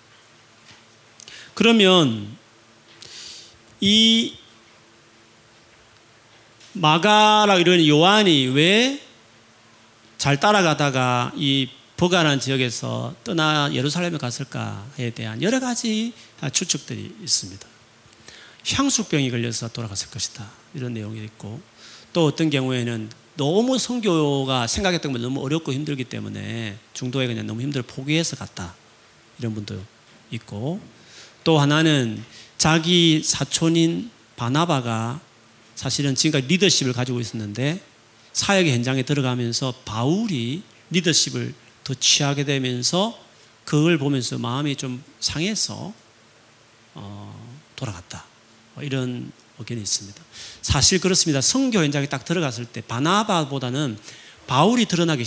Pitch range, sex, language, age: 115-160 Hz, male, Korean, 40-59